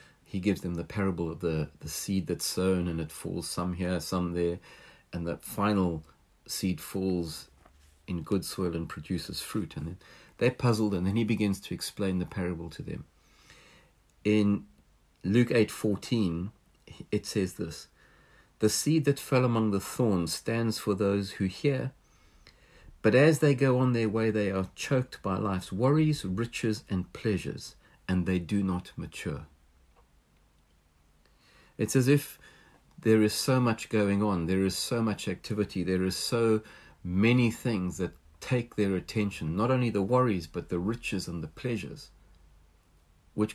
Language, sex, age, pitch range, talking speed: English, male, 50-69, 85-115 Hz, 160 wpm